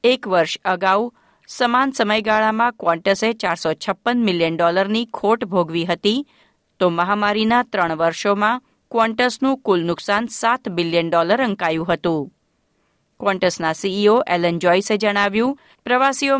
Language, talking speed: Gujarati, 115 wpm